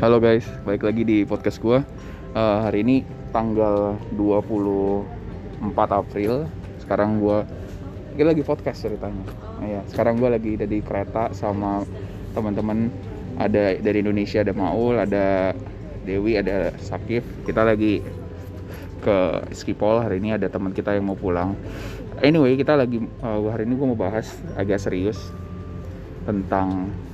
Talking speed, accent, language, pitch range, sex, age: 135 wpm, native, Indonesian, 95-110 Hz, male, 20-39